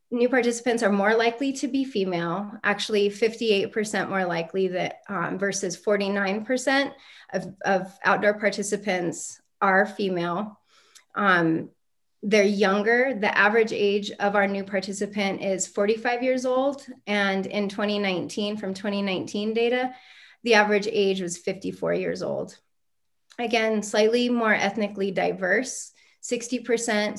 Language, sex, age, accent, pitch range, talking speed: English, female, 20-39, American, 195-230 Hz, 125 wpm